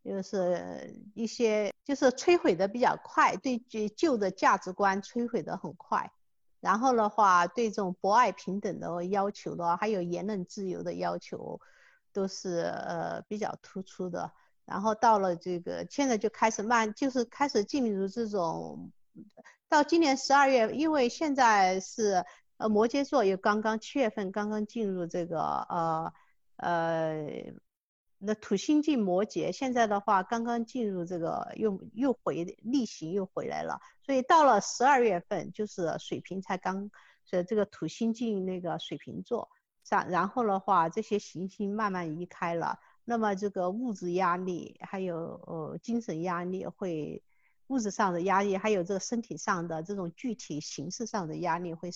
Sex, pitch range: female, 180-230 Hz